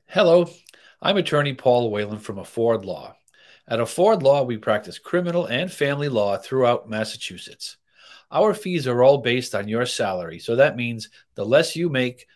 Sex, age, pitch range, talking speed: male, 40-59, 110-140 Hz, 165 wpm